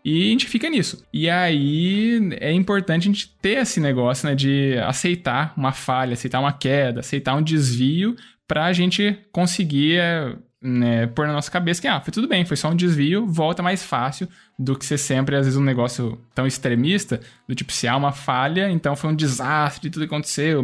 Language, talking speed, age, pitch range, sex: Portuguese, 200 wpm, 10-29, 125-165 Hz, male